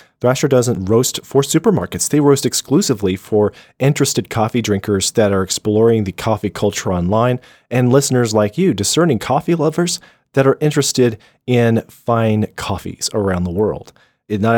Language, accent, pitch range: English, American, 105-135 Hz